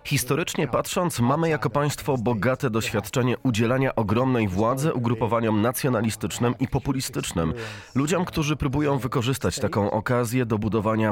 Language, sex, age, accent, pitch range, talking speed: Polish, male, 30-49, native, 105-130 Hz, 120 wpm